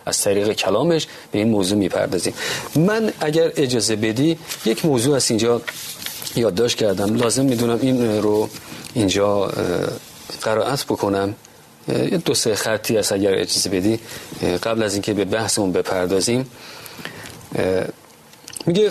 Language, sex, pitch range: Persian, male, 105-145 Hz